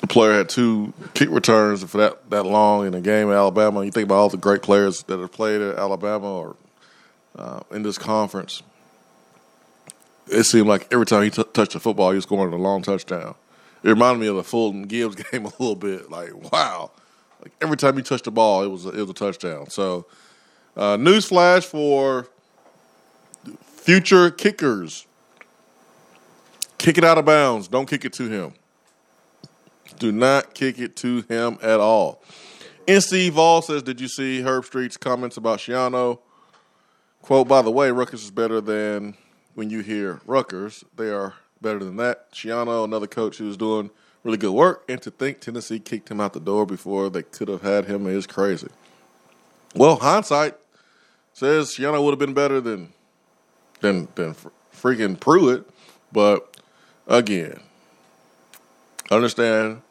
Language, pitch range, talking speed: English, 100-130 Hz, 170 wpm